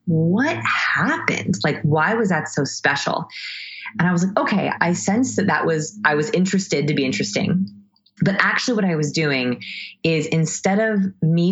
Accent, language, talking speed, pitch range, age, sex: American, English, 175 wpm, 145-185 Hz, 20-39, female